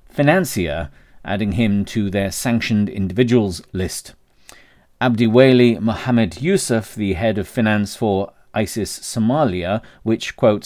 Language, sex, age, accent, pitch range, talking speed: English, male, 40-59, British, 95-125 Hz, 115 wpm